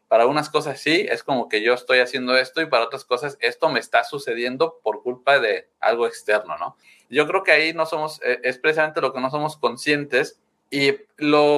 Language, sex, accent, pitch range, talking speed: Spanish, male, Mexican, 135-185 Hz, 205 wpm